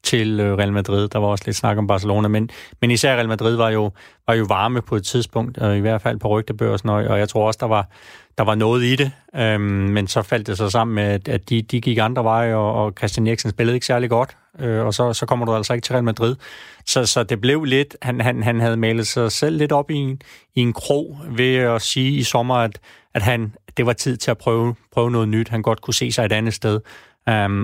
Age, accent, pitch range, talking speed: 30-49, native, 105-120 Hz, 260 wpm